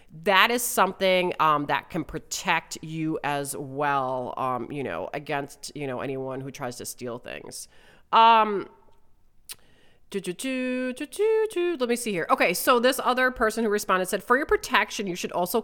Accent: American